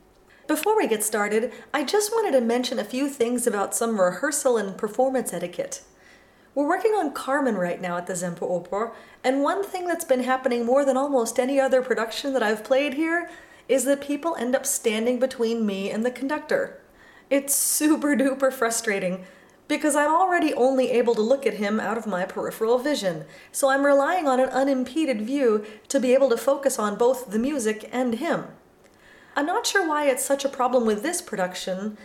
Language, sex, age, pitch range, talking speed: English, female, 30-49, 225-290 Hz, 190 wpm